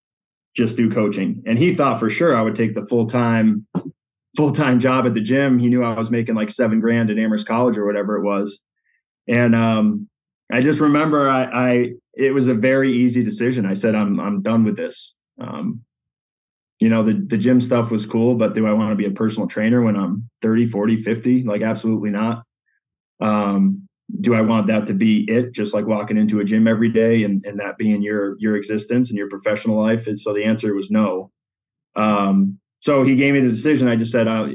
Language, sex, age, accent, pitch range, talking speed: English, male, 20-39, American, 105-125 Hz, 210 wpm